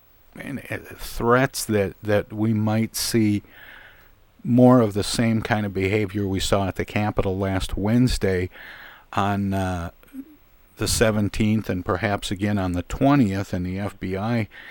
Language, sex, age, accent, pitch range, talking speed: English, male, 50-69, American, 90-110 Hz, 145 wpm